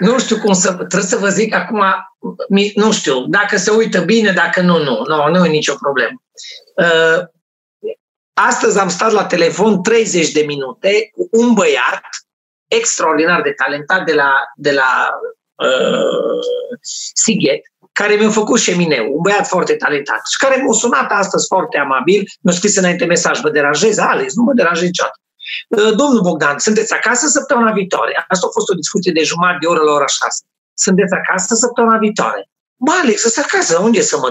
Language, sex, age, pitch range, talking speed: Romanian, male, 40-59, 175-230 Hz, 180 wpm